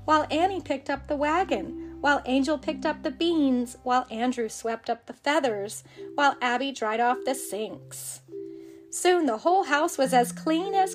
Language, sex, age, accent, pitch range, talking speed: English, female, 30-49, American, 230-315 Hz, 175 wpm